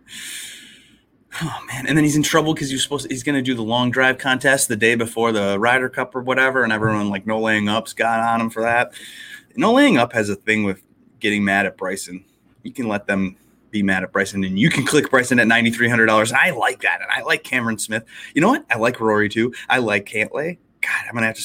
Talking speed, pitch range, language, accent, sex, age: 245 wpm, 110-150 Hz, English, American, male, 30-49